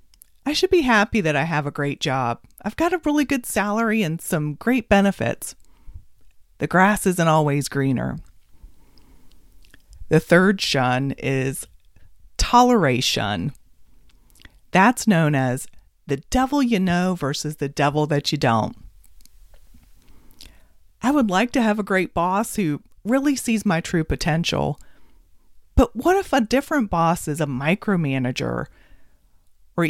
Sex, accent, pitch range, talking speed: female, American, 140-215 Hz, 135 wpm